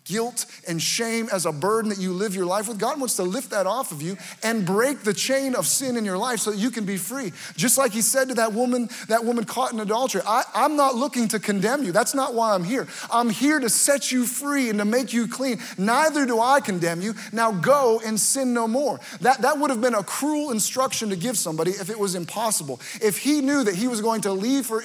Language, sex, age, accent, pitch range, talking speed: English, male, 30-49, American, 195-245 Hz, 255 wpm